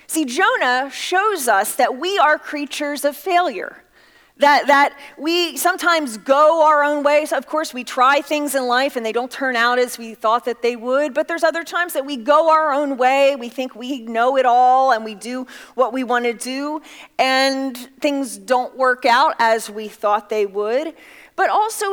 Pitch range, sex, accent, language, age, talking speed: 245-310 Hz, female, American, English, 30-49, 195 wpm